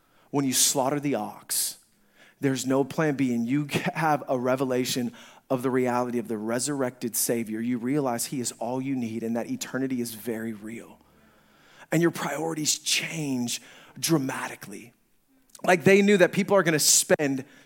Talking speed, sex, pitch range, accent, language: 160 wpm, male, 140-210 Hz, American, English